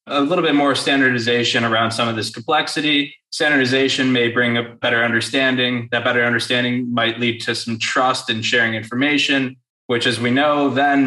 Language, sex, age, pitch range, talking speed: English, male, 20-39, 115-135 Hz, 175 wpm